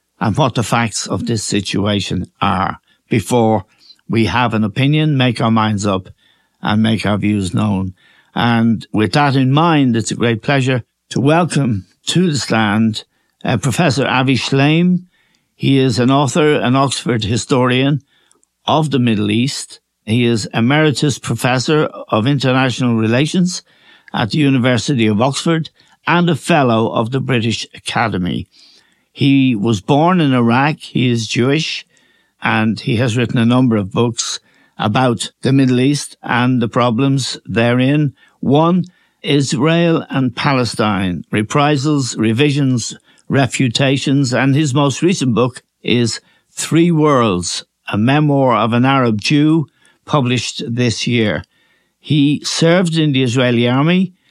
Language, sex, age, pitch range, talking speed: English, male, 60-79, 115-145 Hz, 135 wpm